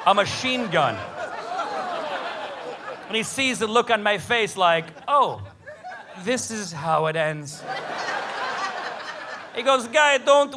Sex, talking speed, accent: male, 125 wpm, American